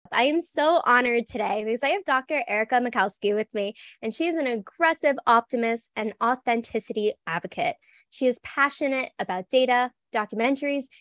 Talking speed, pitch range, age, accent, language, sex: 155 wpm, 215-285 Hz, 10-29, American, English, female